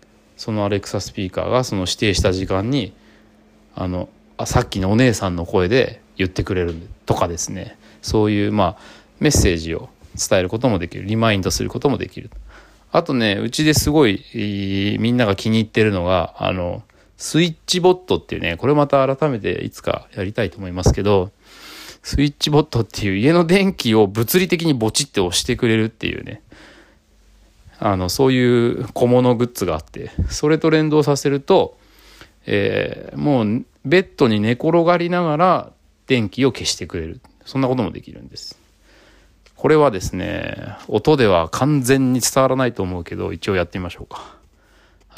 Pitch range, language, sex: 95-135 Hz, Japanese, male